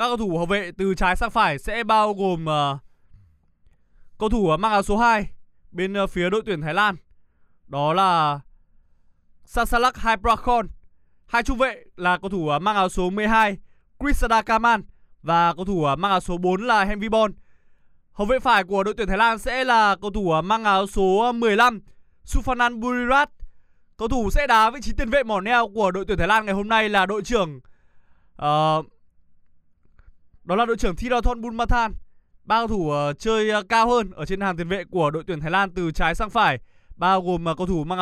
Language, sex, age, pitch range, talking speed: Vietnamese, male, 20-39, 170-230 Hz, 200 wpm